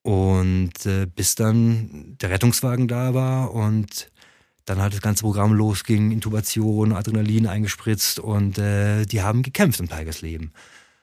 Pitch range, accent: 105-135 Hz, German